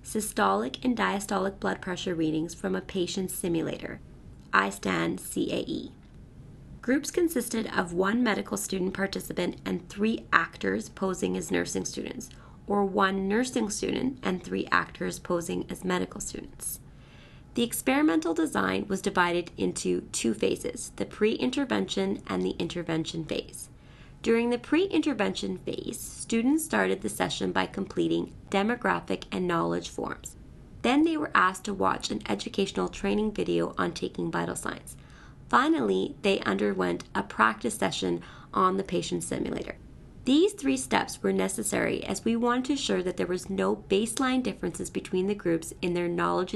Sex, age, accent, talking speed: female, 30-49, American, 140 wpm